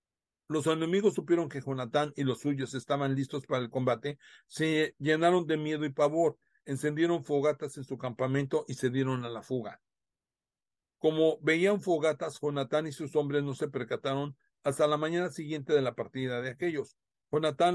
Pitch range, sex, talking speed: 135-160 Hz, male, 170 wpm